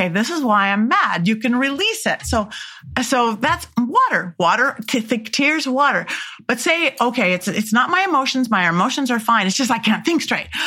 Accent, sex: American, female